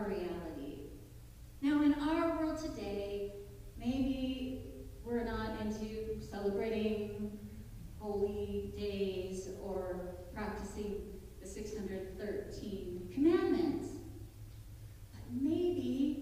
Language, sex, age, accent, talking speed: English, female, 40-59, American, 75 wpm